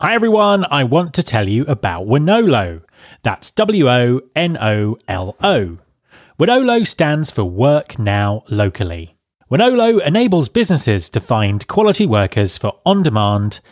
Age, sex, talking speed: 30-49, male, 140 wpm